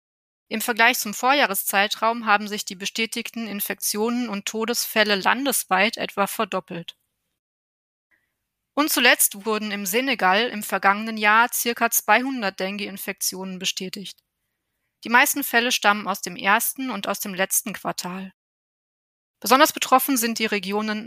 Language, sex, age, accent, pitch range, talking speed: German, female, 20-39, German, 200-245 Hz, 120 wpm